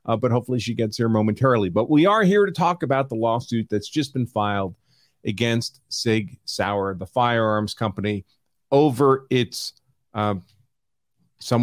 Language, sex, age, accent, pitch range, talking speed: English, male, 40-59, American, 115-140 Hz, 155 wpm